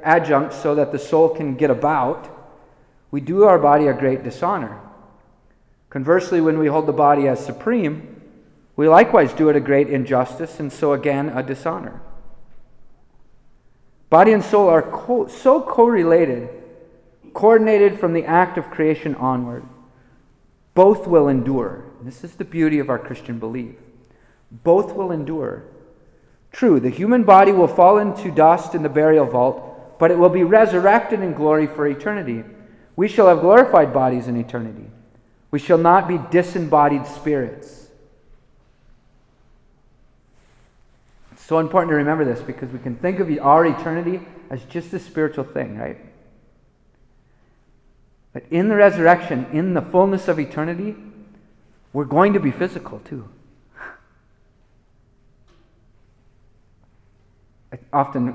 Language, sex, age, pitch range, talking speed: English, male, 30-49, 125-175 Hz, 135 wpm